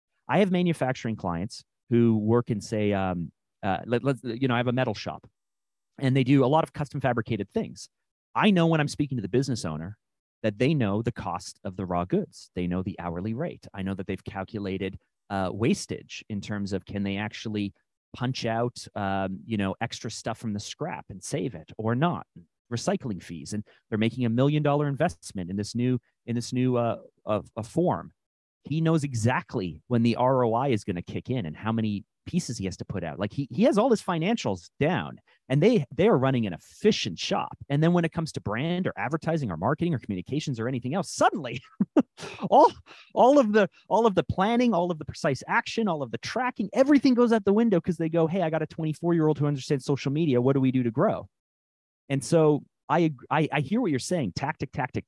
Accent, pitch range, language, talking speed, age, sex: American, 105-160 Hz, English, 220 wpm, 30-49, male